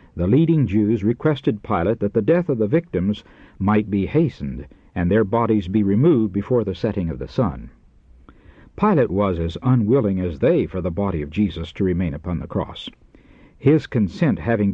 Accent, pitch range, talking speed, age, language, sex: American, 90-120 Hz, 180 wpm, 60-79, English, male